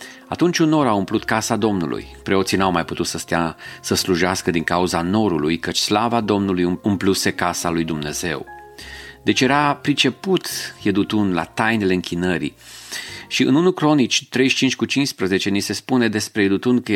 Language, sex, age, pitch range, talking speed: Romanian, male, 40-59, 90-115 Hz, 160 wpm